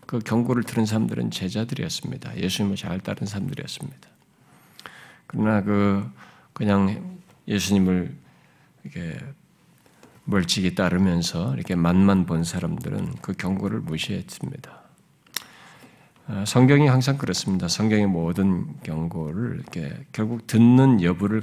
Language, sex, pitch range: Korean, male, 95-130 Hz